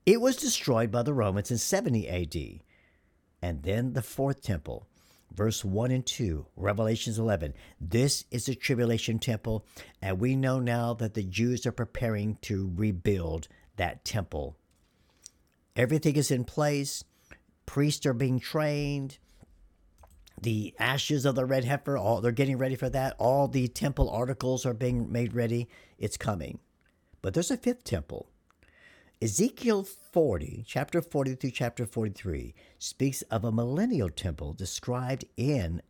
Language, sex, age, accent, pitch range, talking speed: English, male, 50-69, American, 90-135 Hz, 145 wpm